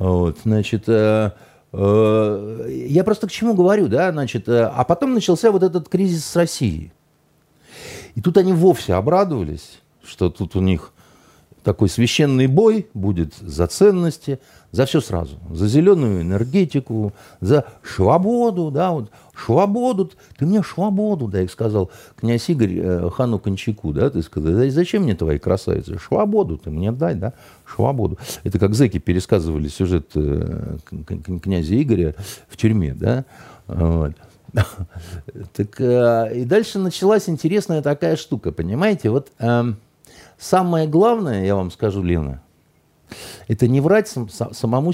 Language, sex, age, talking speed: Russian, male, 50-69, 145 wpm